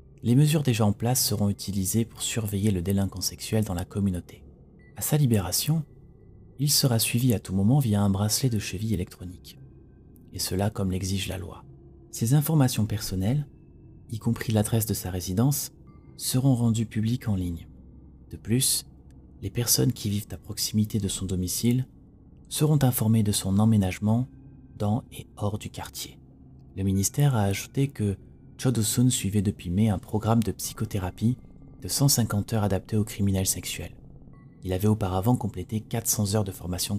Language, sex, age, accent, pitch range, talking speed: French, male, 30-49, French, 95-120 Hz, 160 wpm